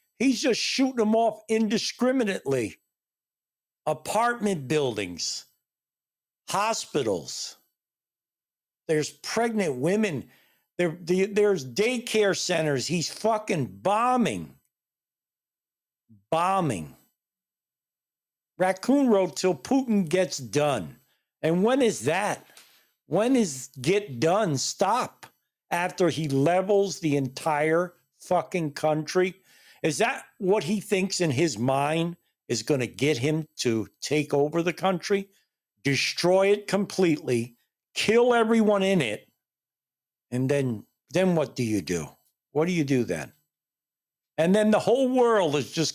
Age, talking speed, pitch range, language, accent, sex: 60-79, 110 wpm, 140-210 Hz, English, American, male